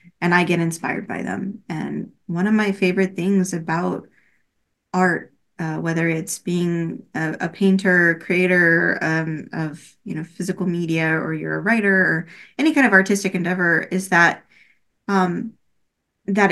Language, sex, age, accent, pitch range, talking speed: English, female, 20-39, American, 170-195 Hz, 155 wpm